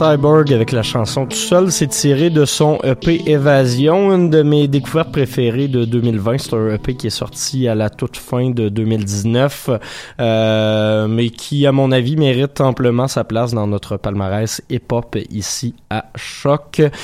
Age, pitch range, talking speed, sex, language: 20-39, 105-140 Hz, 185 wpm, male, French